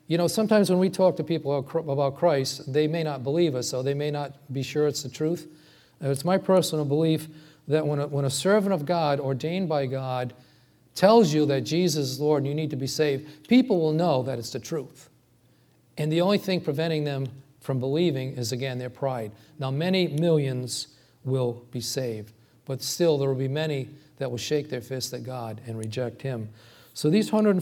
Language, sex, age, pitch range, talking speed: English, male, 40-59, 125-155 Hz, 205 wpm